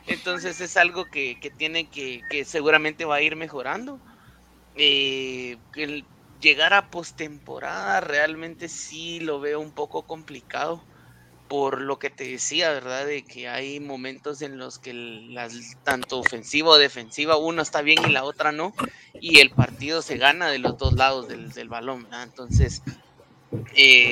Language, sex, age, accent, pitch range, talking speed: Spanish, male, 30-49, Mexican, 125-155 Hz, 165 wpm